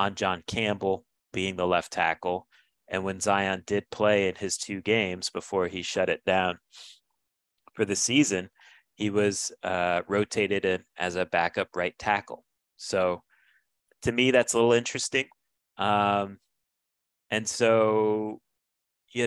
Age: 30-49